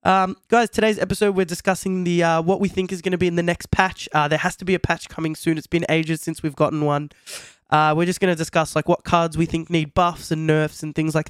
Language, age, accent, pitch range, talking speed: English, 20-39, Australian, 155-185 Hz, 270 wpm